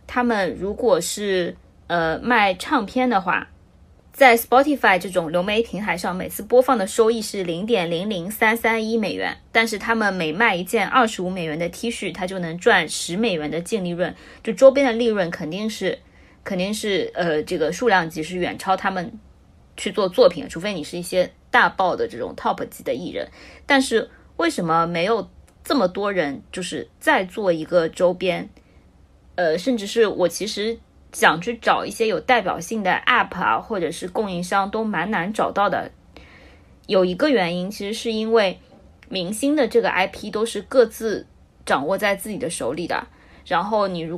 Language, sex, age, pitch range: Chinese, female, 20-39, 180-230 Hz